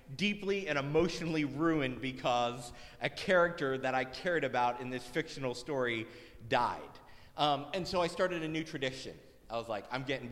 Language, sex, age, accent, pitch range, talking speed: English, male, 30-49, American, 130-175 Hz, 170 wpm